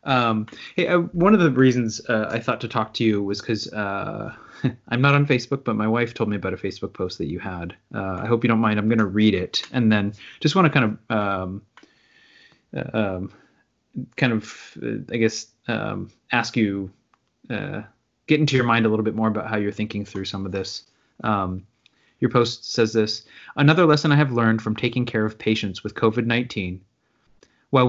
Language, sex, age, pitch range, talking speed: English, male, 30-49, 105-125 Hz, 205 wpm